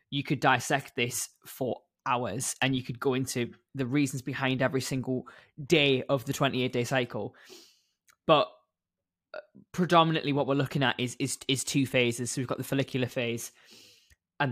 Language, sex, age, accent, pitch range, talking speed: English, male, 10-29, British, 125-140 Hz, 165 wpm